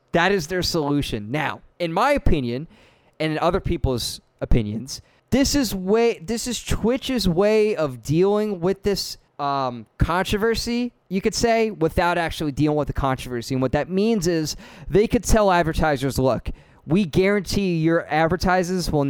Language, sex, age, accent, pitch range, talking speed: English, male, 20-39, American, 130-180 Hz, 155 wpm